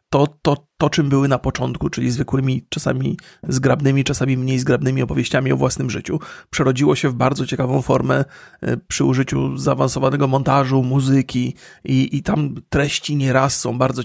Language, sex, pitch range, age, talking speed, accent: Polish, male, 130-150 Hz, 30-49, 150 wpm, native